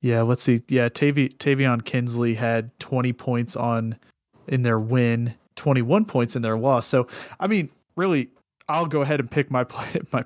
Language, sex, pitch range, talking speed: English, male, 120-140 Hz, 175 wpm